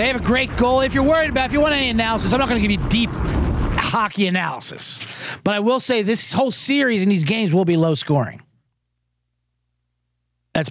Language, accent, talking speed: English, American, 215 wpm